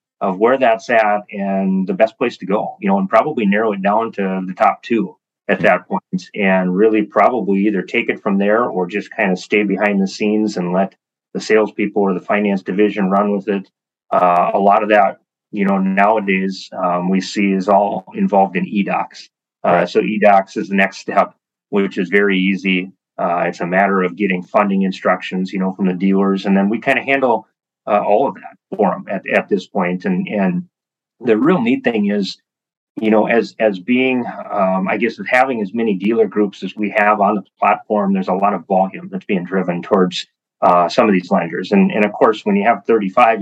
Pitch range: 95-105 Hz